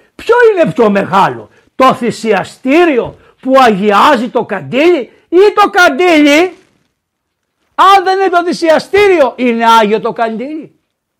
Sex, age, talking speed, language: male, 60-79, 120 wpm, Greek